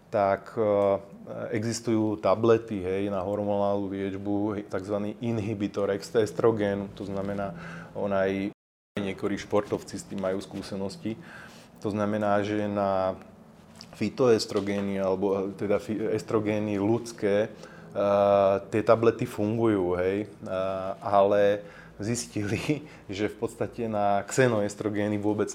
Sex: male